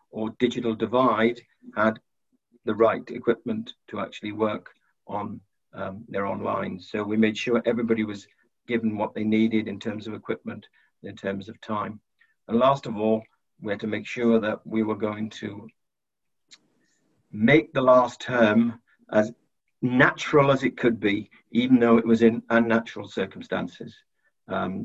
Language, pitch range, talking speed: English, 105-120 Hz, 155 wpm